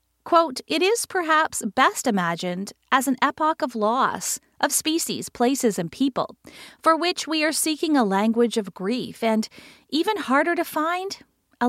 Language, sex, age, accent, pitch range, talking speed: English, female, 40-59, American, 210-305 Hz, 160 wpm